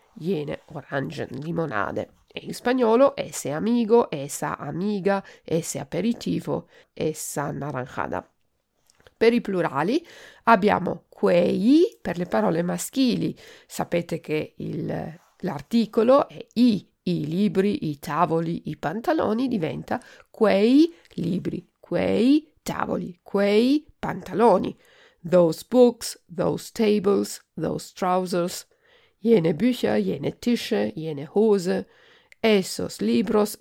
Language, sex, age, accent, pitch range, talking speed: Italian, female, 50-69, native, 180-275 Hz, 100 wpm